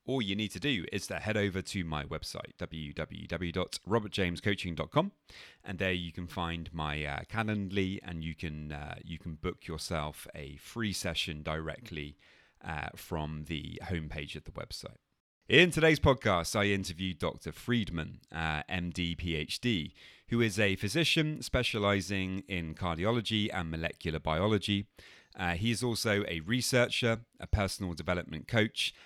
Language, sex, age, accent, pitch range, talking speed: English, male, 30-49, British, 80-105 Hz, 140 wpm